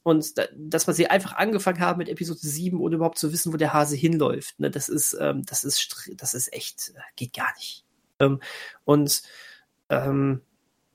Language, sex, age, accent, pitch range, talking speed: German, male, 30-49, German, 150-180 Hz, 185 wpm